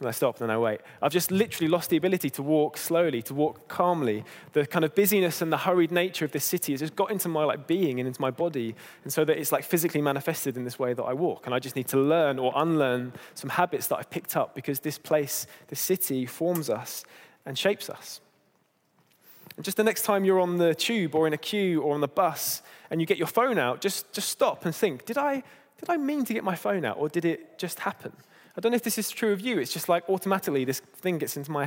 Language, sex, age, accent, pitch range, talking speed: English, male, 20-39, British, 145-190 Hz, 260 wpm